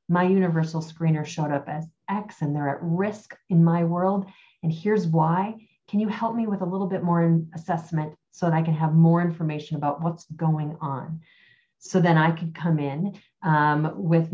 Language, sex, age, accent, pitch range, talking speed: English, female, 30-49, American, 155-185 Hz, 195 wpm